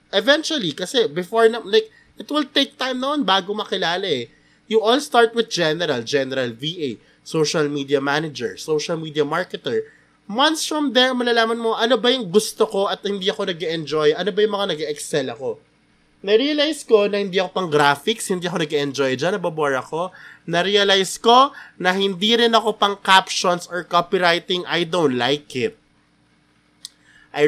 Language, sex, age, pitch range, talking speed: Filipino, male, 20-39, 145-225 Hz, 170 wpm